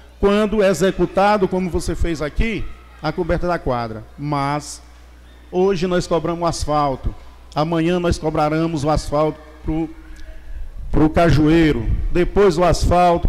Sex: male